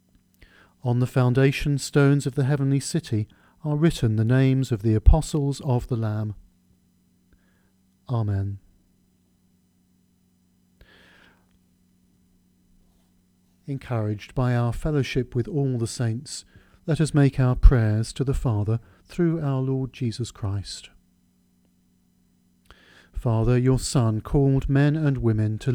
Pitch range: 95-140 Hz